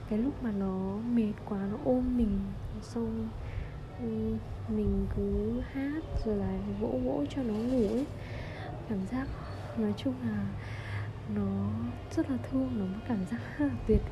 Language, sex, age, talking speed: Vietnamese, female, 20-39, 150 wpm